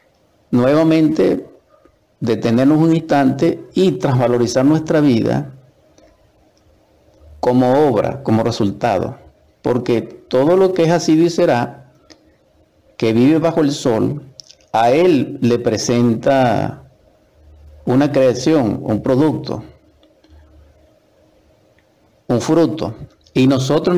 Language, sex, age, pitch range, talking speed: Spanish, male, 50-69, 115-160 Hz, 95 wpm